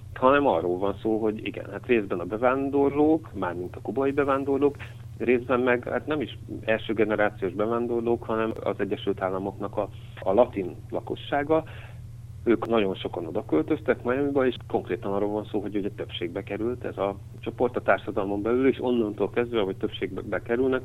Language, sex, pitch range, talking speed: Hungarian, male, 100-120 Hz, 165 wpm